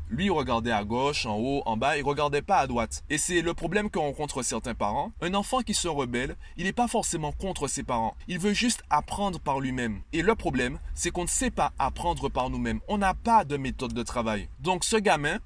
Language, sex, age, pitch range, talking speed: French, male, 30-49, 140-185 Hz, 235 wpm